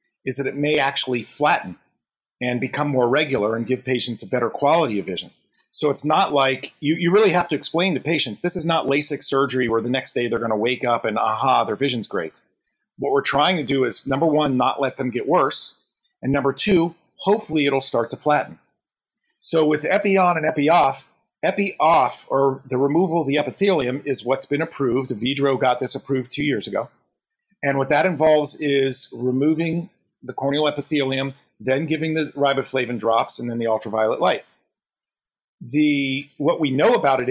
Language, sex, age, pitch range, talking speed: English, male, 40-59, 125-150 Hz, 190 wpm